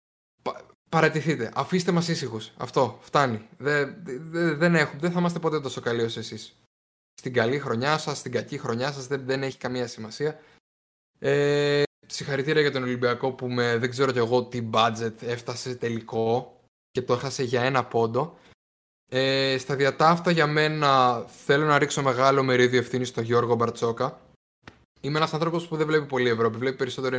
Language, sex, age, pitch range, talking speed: Greek, male, 20-39, 120-140 Hz, 165 wpm